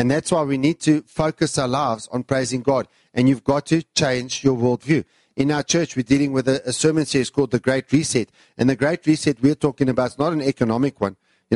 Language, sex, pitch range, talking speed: English, male, 125-155 Hz, 235 wpm